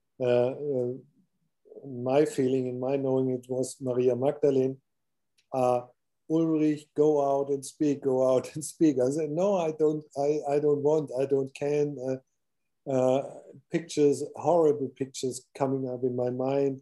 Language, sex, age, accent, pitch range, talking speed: English, male, 50-69, German, 125-150 Hz, 155 wpm